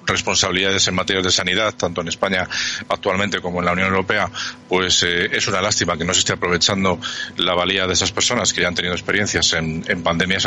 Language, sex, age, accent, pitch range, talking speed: Spanish, male, 40-59, Spanish, 90-105 Hz, 210 wpm